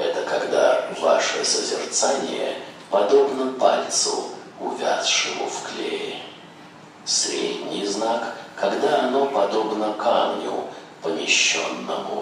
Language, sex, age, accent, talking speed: Russian, male, 50-69, native, 80 wpm